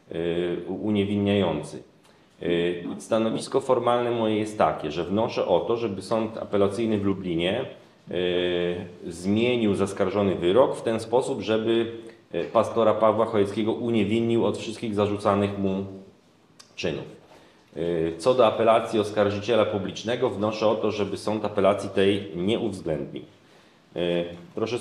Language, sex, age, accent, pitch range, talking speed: Polish, male, 30-49, native, 100-115 Hz, 110 wpm